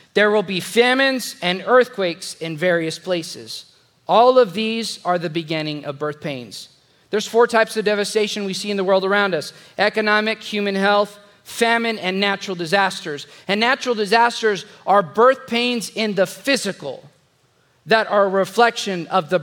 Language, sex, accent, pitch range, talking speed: English, male, American, 150-200 Hz, 160 wpm